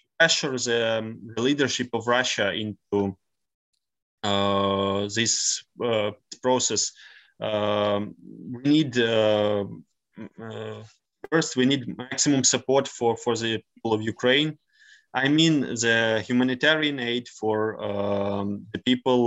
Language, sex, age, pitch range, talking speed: English, male, 20-39, 110-130 Hz, 110 wpm